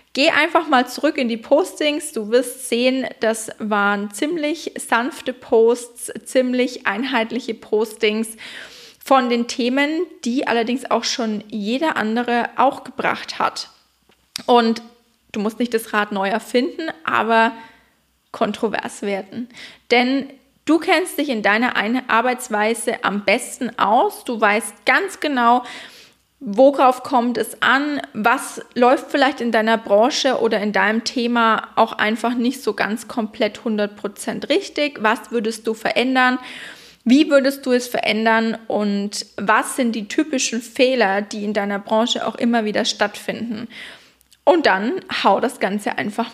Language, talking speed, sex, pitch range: German, 135 wpm, female, 220-260 Hz